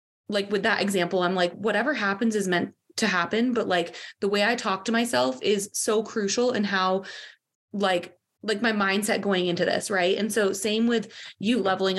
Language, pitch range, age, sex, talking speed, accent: English, 180-225 Hz, 20-39, female, 195 wpm, American